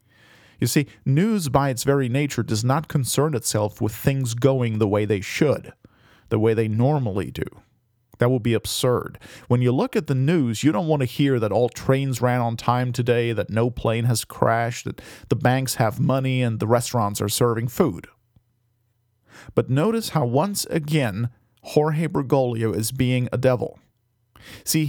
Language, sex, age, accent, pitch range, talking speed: English, male, 40-59, American, 115-140 Hz, 175 wpm